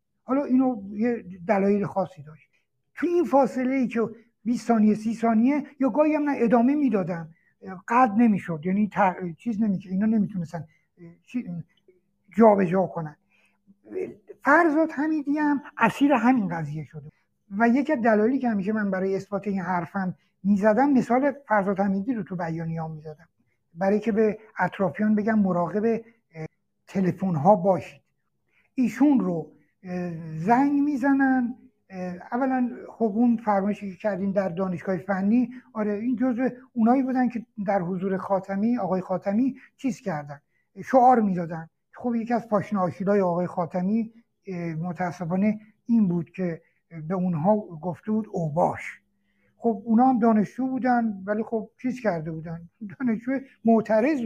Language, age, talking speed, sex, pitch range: Persian, 60-79, 135 wpm, male, 180-245 Hz